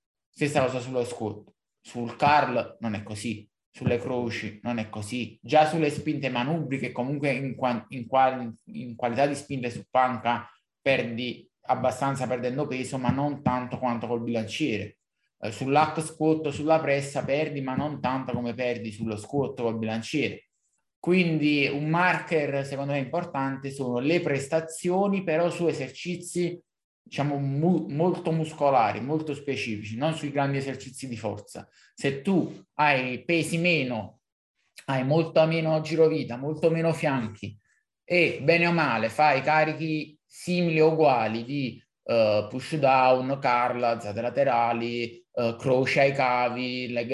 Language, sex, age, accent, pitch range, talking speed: Italian, male, 20-39, native, 120-155 Hz, 135 wpm